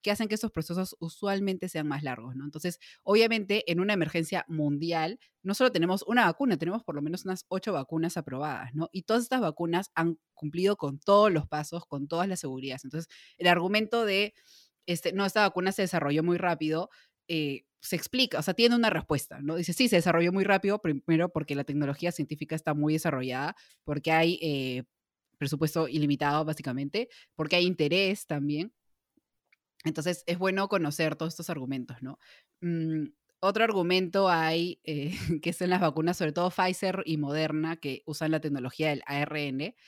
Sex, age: female, 20-39